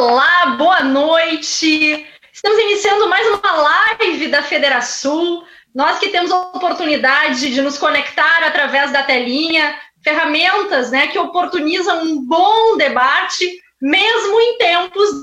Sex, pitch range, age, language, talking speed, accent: female, 275-360 Hz, 20-39, Portuguese, 120 wpm, Brazilian